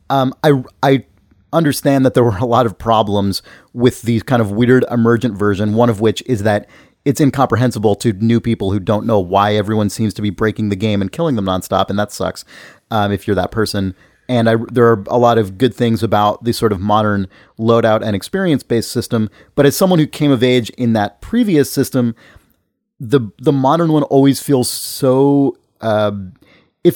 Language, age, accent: English, 30-49, American